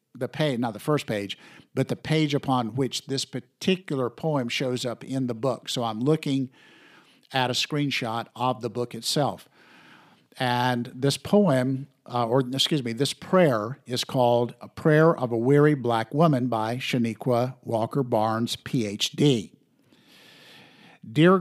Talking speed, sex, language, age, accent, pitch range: 150 wpm, male, English, 50-69, American, 120-145 Hz